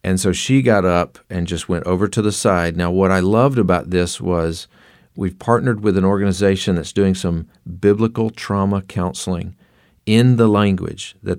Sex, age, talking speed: male, 40-59, 180 wpm